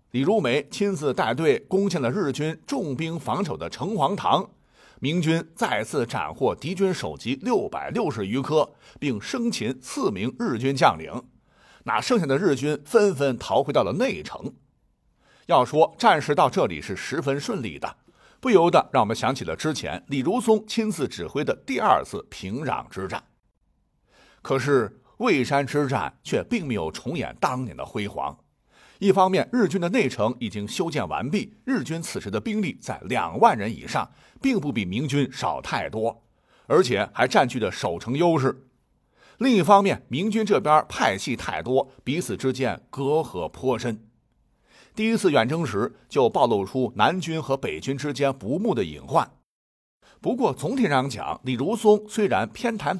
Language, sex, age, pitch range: Chinese, male, 50-69, 130-200 Hz